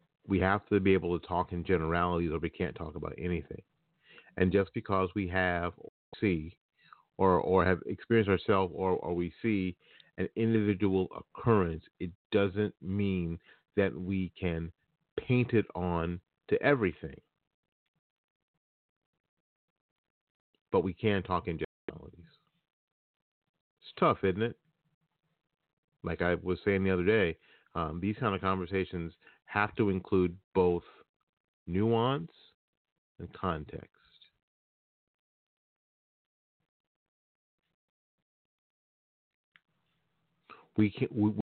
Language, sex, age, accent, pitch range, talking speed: English, male, 40-59, American, 85-105 Hz, 110 wpm